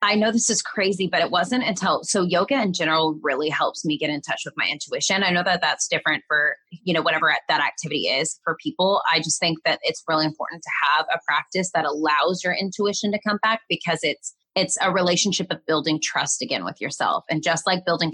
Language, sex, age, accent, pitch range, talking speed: English, female, 20-39, American, 160-205 Hz, 230 wpm